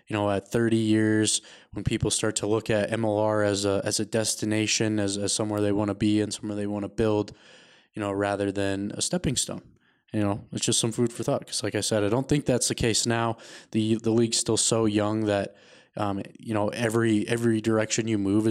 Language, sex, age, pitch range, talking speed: English, male, 20-39, 105-115 Hz, 230 wpm